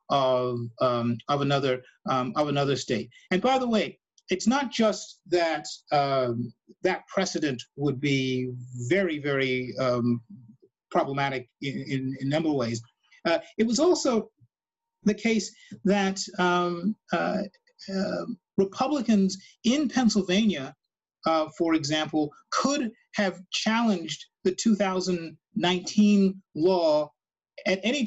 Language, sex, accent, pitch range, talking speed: English, male, American, 150-205 Hz, 120 wpm